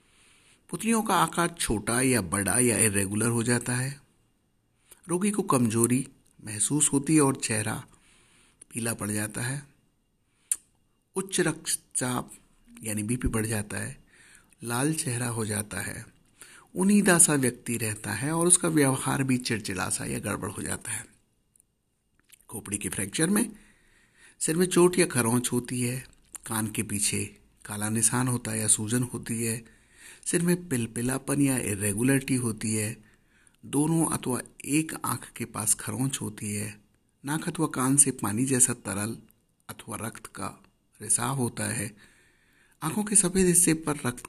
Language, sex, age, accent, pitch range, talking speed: English, male, 60-79, Indian, 110-145 Hz, 115 wpm